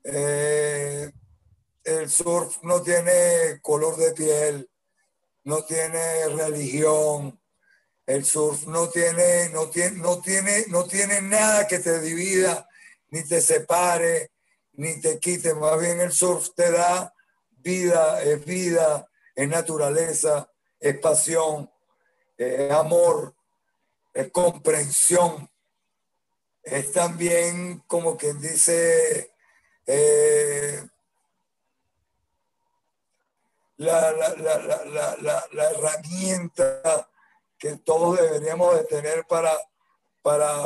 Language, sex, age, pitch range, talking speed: Spanish, male, 60-79, 150-180 Hz, 100 wpm